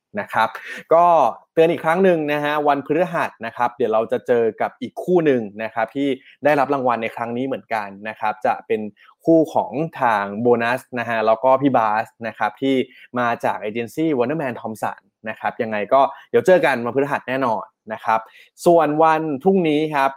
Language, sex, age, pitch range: Thai, male, 20-39, 115-155 Hz